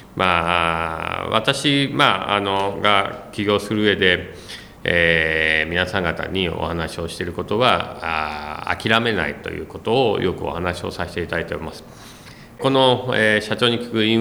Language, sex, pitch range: Japanese, male, 80-110 Hz